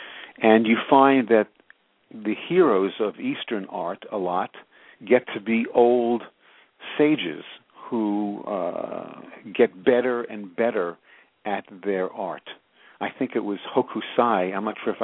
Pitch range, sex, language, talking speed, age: 100-125 Hz, male, English, 135 wpm, 50-69